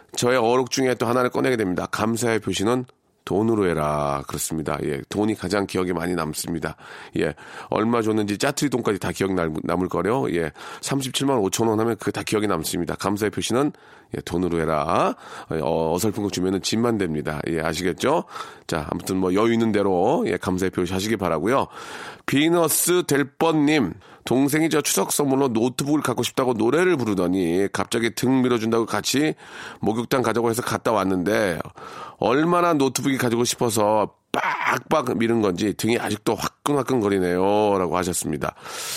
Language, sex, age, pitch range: Korean, male, 40-59, 95-135 Hz